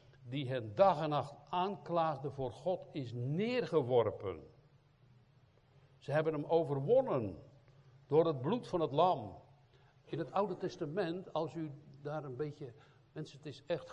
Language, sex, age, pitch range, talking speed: Dutch, male, 60-79, 125-165 Hz, 140 wpm